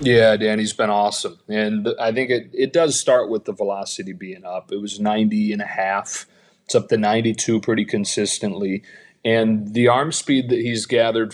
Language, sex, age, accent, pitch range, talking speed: English, male, 30-49, American, 105-125 Hz, 190 wpm